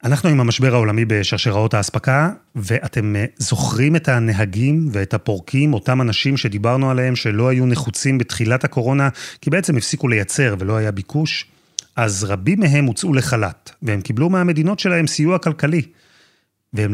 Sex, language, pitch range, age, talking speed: male, Hebrew, 115-155 Hz, 30-49, 140 wpm